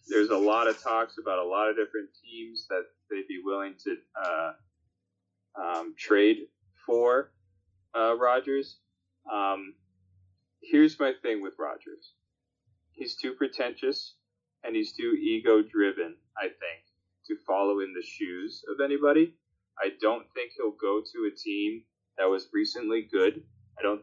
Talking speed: 140 wpm